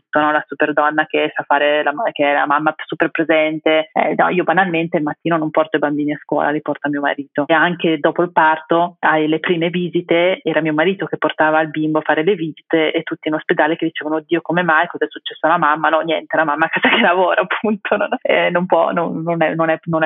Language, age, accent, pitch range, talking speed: Italian, 30-49, native, 150-170 Hz, 220 wpm